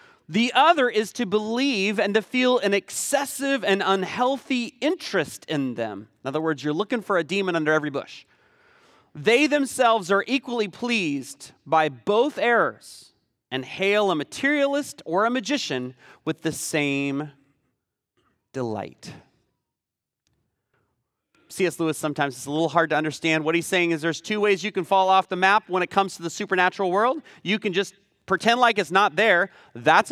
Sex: male